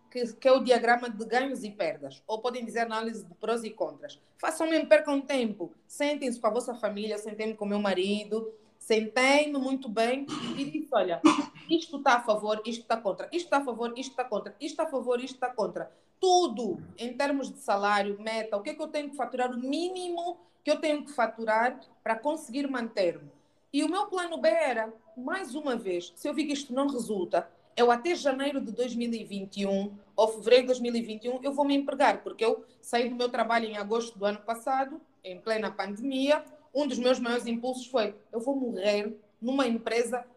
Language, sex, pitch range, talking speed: Portuguese, female, 220-280 Hz, 200 wpm